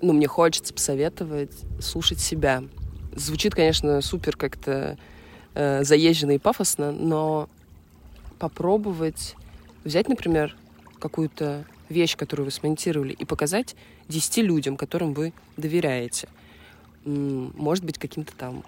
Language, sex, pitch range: Russian, female, 145-175 Hz